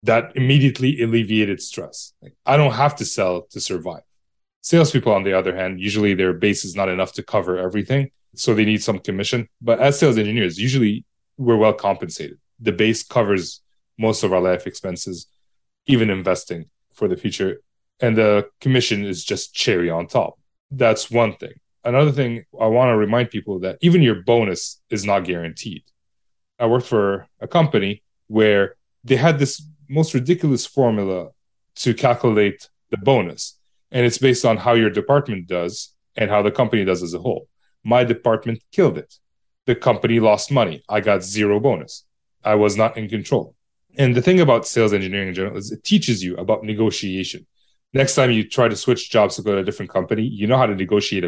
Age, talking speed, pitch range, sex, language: 30-49, 185 wpm, 100-125 Hz, male, English